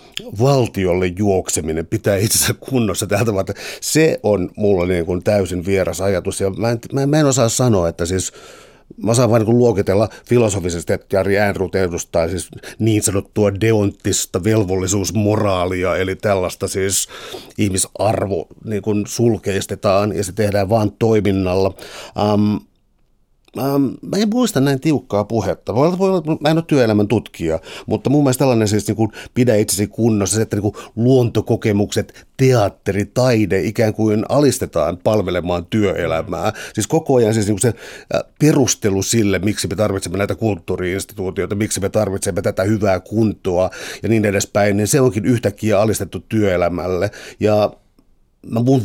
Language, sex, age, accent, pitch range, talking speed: Finnish, male, 60-79, native, 95-115 Hz, 140 wpm